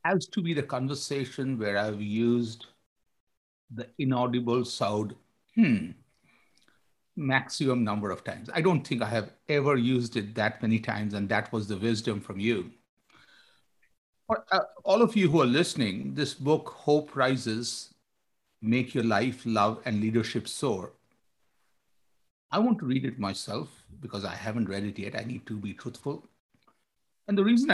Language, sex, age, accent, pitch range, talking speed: English, male, 50-69, Indian, 115-155 Hz, 155 wpm